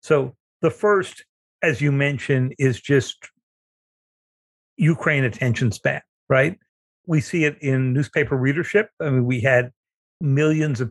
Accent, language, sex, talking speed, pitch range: American, English, male, 130 wpm, 125-155 Hz